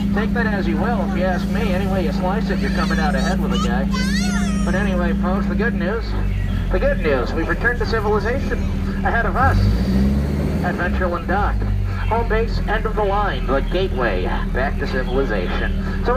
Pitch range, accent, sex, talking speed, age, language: 95-105 Hz, American, male, 185 wpm, 50-69, English